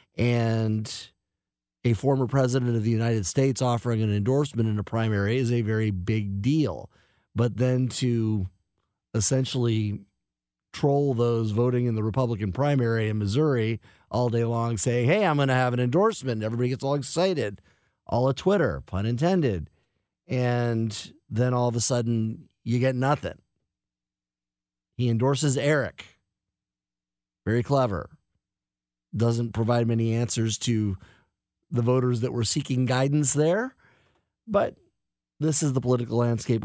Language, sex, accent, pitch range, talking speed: English, male, American, 105-130 Hz, 140 wpm